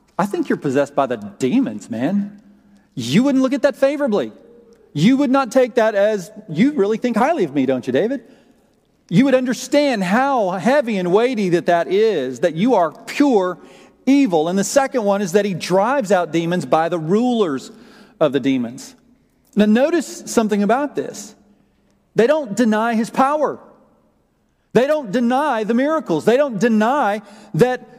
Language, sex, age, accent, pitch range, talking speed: English, male, 40-59, American, 185-255 Hz, 170 wpm